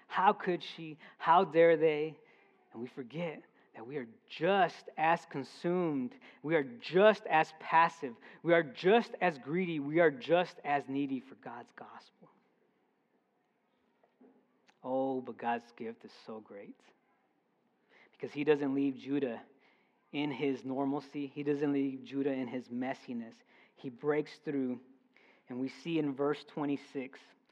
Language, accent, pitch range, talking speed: English, American, 140-190 Hz, 140 wpm